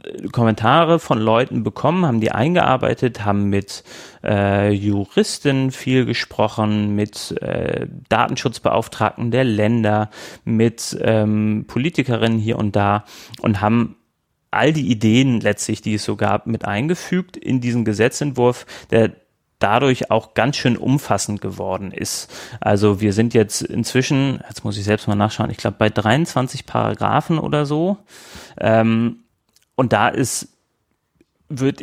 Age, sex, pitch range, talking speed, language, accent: 30-49, male, 105-125 Hz, 130 wpm, German, German